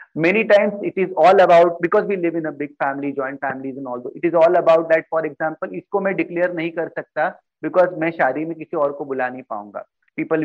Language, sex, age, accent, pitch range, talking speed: Hindi, male, 30-49, native, 135-165 Hz, 235 wpm